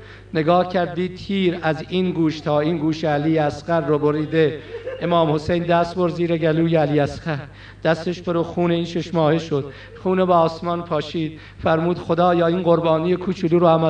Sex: male